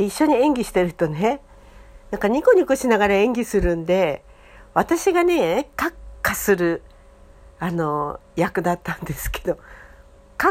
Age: 60-79